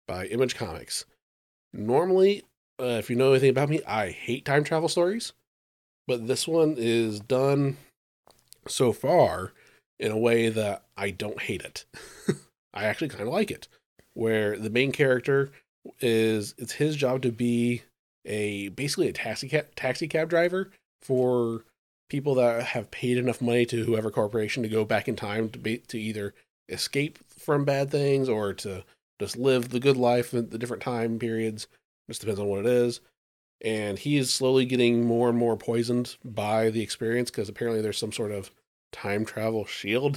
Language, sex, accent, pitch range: English, male, American, 110-140 Hz